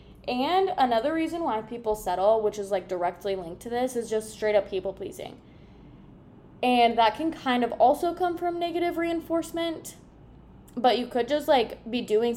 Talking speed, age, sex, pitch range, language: 175 wpm, 10-29, female, 195-240 Hz, English